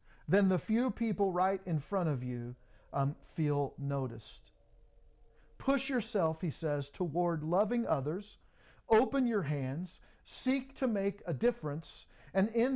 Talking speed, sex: 135 wpm, male